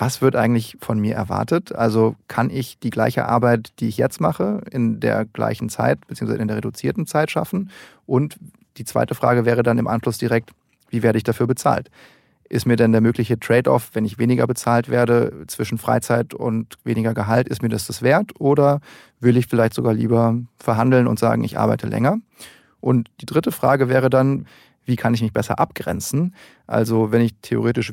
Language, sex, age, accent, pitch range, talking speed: German, male, 30-49, German, 115-130 Hz, 190 wpm